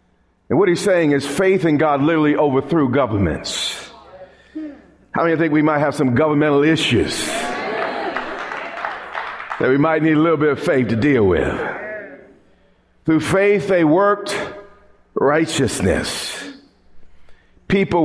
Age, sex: 50-69, male